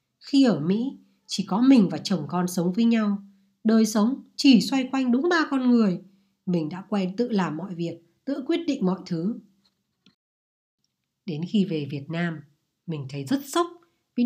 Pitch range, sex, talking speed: 185-250 Hz, female, 180 wpm